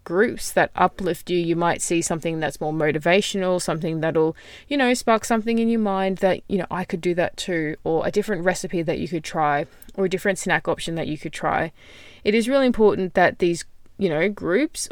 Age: 20-39